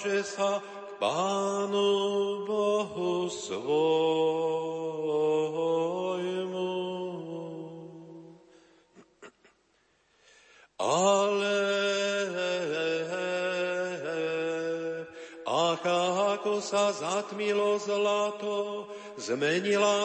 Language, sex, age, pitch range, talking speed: Slovak, male, 50-69, 170-200 Hz, 35 wpm